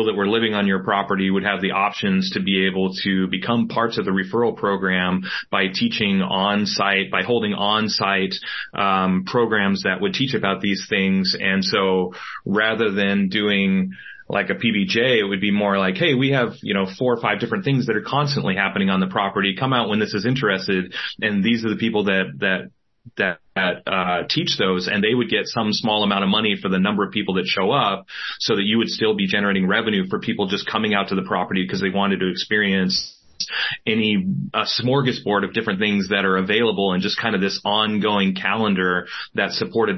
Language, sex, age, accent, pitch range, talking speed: English, male, 30-49, American, 95-105 Hz, 205 wpm